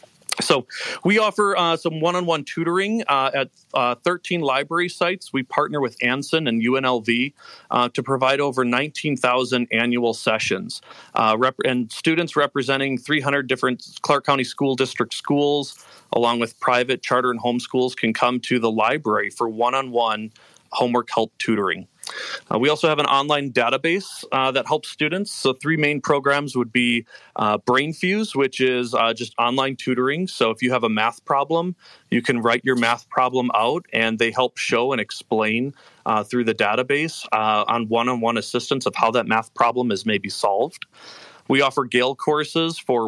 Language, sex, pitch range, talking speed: English, male, 120-145 Hz, 165 wpm